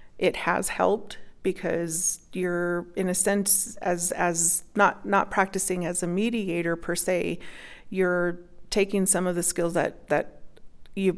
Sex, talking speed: female, 145 wpm